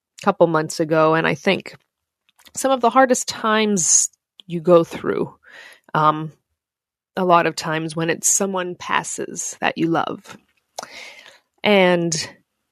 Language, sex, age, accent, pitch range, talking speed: English, female, 20-39, American, 165-225 Hz, 125 wpm